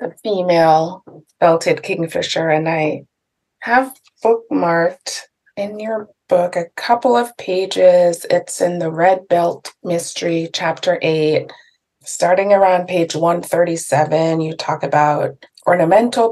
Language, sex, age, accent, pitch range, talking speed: English, female, 20-39, American, 165-210 Hz, 115 wpm